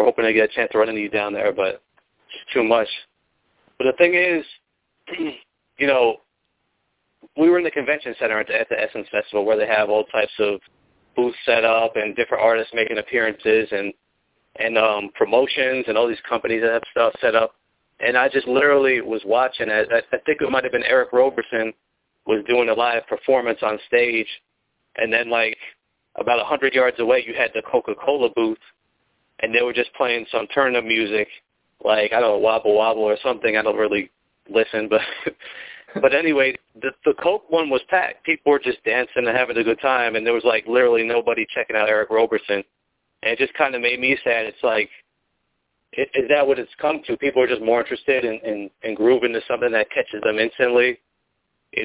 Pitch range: 110-135 Hz